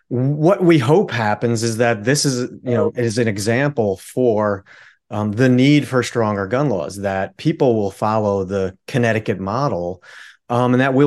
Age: 30-49